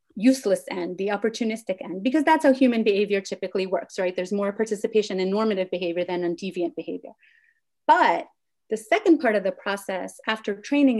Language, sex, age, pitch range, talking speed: English, female, 30-49, 190-235 Hz, 175 wpm